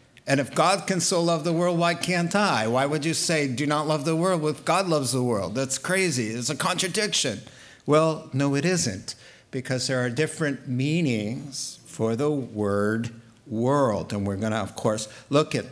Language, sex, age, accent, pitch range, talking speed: English, male, 50-69, American, 125-170 Hz, 200 wpm